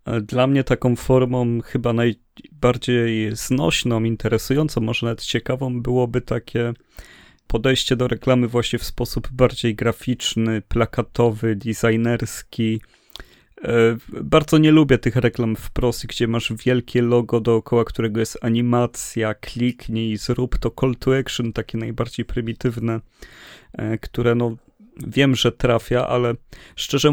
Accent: native